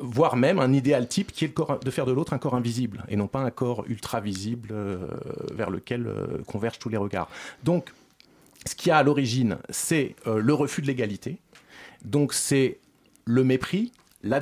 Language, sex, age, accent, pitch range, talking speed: French, male, 40-59, French, 110-140 Hz, 200 wpm